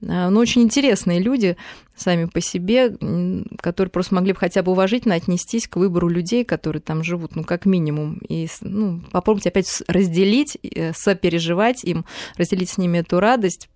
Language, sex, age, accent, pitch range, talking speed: Russian, female, 20-39, native, 170-205 Hz, 155 wpm